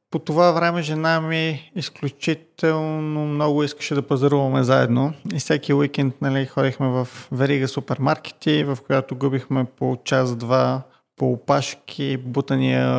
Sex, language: male, Bulgarian